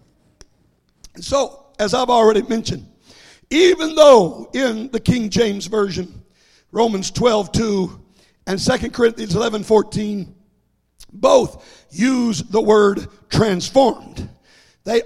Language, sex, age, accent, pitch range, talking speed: English, male, 60-79, American, 205-260 Hz, 105 wpm